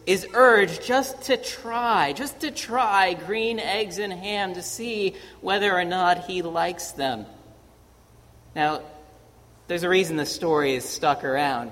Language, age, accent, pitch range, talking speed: English, 40-59, American, 150-205 Hz, 150 wpm